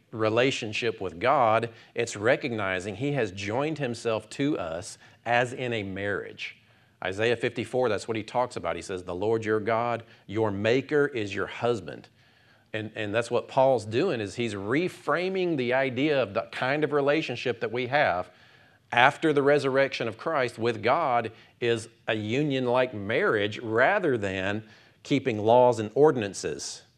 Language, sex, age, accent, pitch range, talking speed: English, male, 40-59, American, 110-145 Hz, 155 wpm